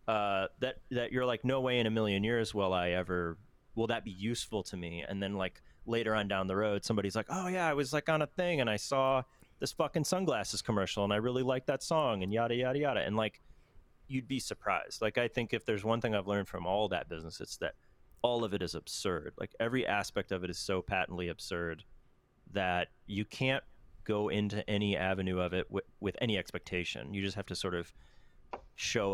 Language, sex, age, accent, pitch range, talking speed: English, male, 30-49, American, 90-120 Hz, 225 wpm